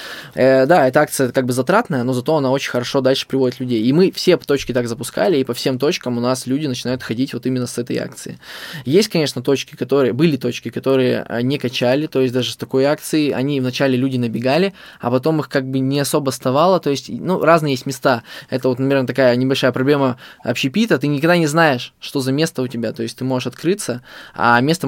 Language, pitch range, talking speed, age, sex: Russian, 125-140 Hz, 220 wpm, 20-39, male